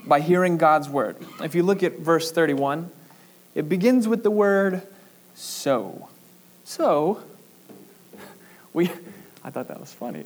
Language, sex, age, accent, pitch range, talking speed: English, male, 20-39, American, 155-195 Hz, 135 wpm